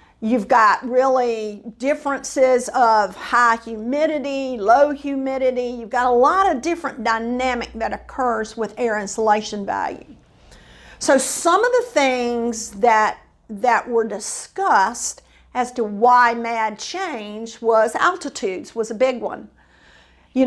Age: 50-69